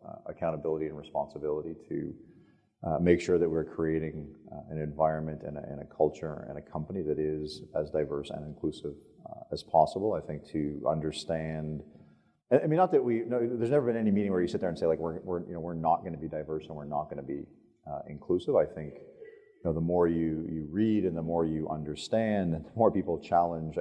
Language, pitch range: English, 75-90 Hz